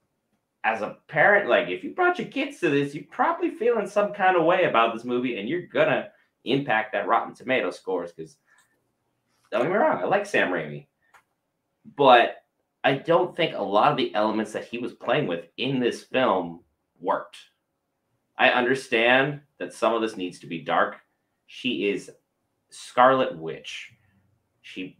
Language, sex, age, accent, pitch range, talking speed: English, male, 30-49, American, 110-150 Hz, 175 wpm